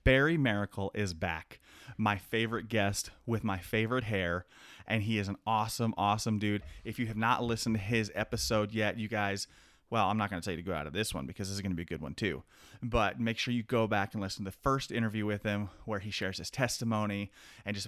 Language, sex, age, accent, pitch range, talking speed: English, male, 30-49, American, 100-120 Hz, 245 wpm